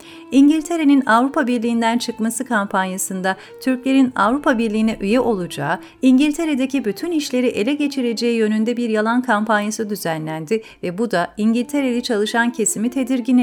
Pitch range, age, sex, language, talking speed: 205-255 Hz, 40-59, female, Turkish, 120 wpm